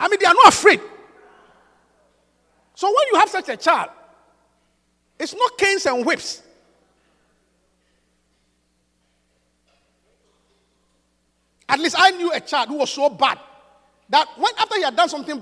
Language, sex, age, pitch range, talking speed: English, male, 50-69, 255-360 Hz, 135 wpm